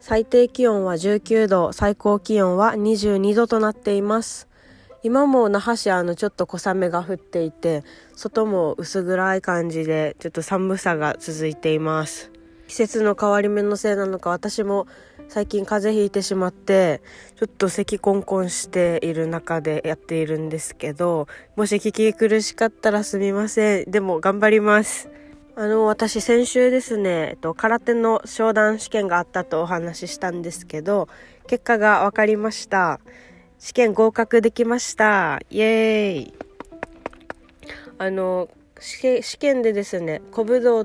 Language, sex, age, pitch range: Japanese, female, 20-39, 170-220 Hz